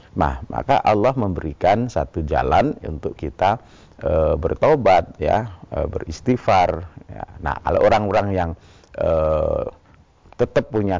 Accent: native